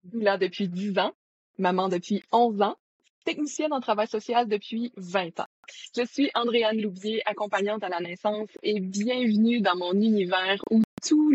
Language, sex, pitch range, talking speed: French, female, 190-230 Hz, 160 wpm